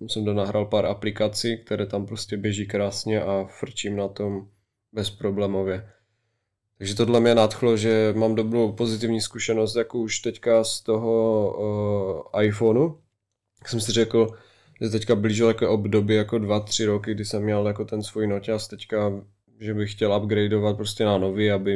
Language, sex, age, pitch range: Czech, male, 20-39, 105-115 Hz